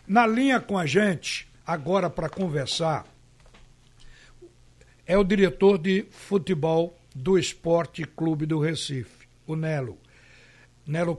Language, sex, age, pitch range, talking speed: Portuguese, male, 60-79, 155-215 Hz, 115 wpm